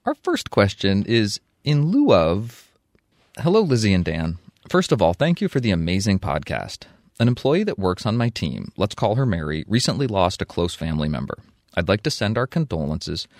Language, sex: English, male